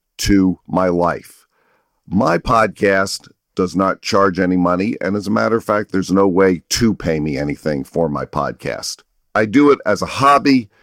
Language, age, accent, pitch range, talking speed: English, 50-69, American, 90-120 Hz, 175 wpm